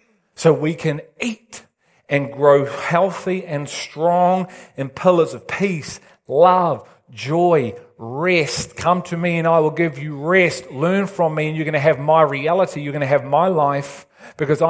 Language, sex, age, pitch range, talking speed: English, male, 40-59, 145-185 Hz, 170 wpm